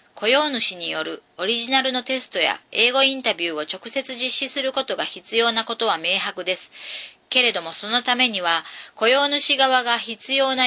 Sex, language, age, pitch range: female, Japanese, 40-59, 190-255 Hz